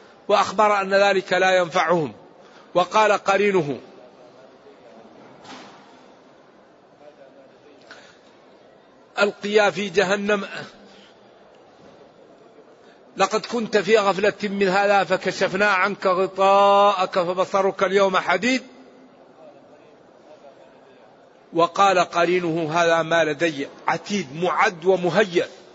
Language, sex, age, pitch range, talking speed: Arabic, male, 50-69, 185-220 Hz, 70 wpm